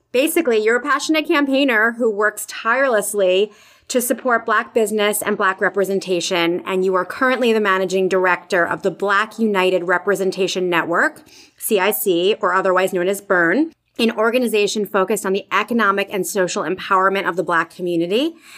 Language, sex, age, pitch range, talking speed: English, female, 30-49, 185-235 Hz, 150 wpm